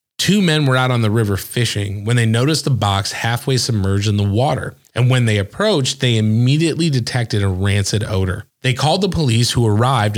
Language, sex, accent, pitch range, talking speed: English, male, American, 110-135 Hz, 200 wpm